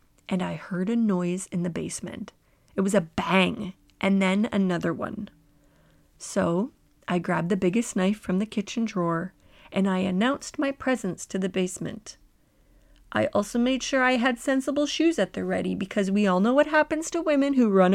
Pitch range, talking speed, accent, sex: 180-245 Hz, 185 wpm, American, female